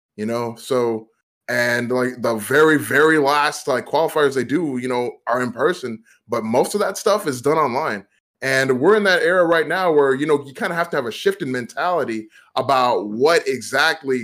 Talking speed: 205 wpm